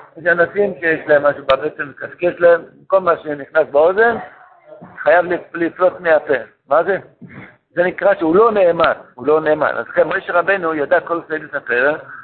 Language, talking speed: Hebrew, 160 wpm